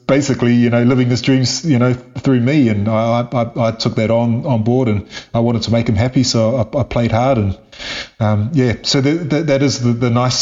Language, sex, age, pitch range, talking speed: English, male, 30-49, 110-130 Hz, 240 wpm